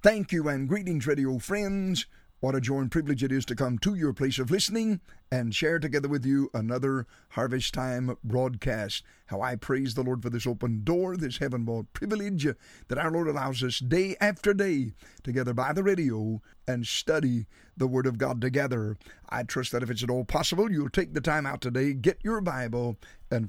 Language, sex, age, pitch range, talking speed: English, male, 50-69, 125-170 Hz, 200 wpm